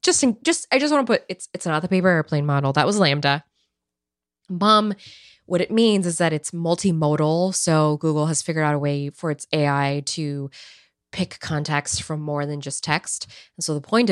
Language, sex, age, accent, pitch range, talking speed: English, female, 20-39, American, 150-200 Hz, 205 wpm